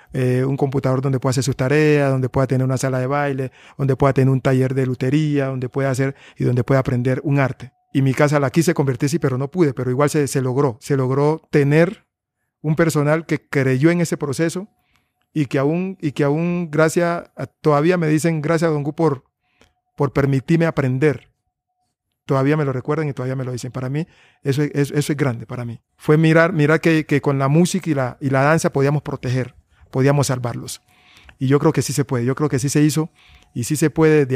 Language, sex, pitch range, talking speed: Spanish, male, 130-155 Hz, 220 wpm